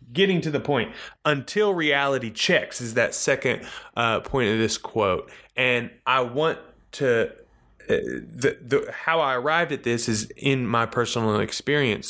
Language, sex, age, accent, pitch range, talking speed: English, male, 20-39, American, 115-145 Hz, 160 wpm